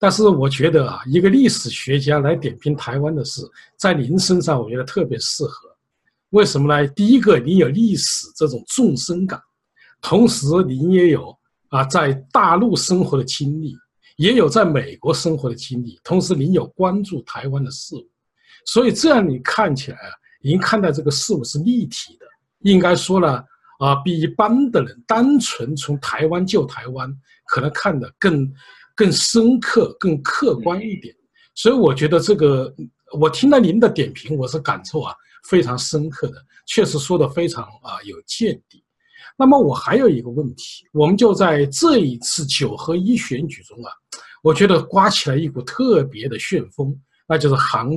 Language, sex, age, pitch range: Chinese, male, 50-69, 140-215 Hz